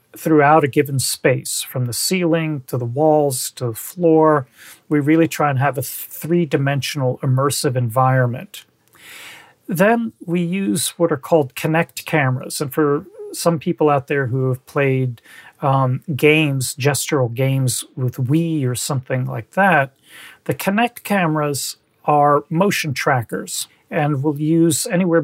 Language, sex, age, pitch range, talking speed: English, male, 40-59, 135-165 Hz, 140 wpm